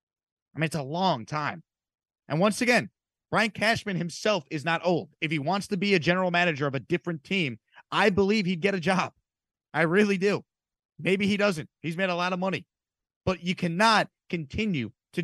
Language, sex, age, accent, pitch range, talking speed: English, male, 30-49, American, 160-210 Hz, 195 wpm